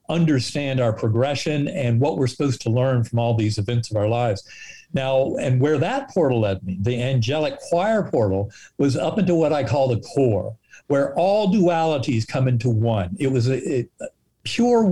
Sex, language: male, English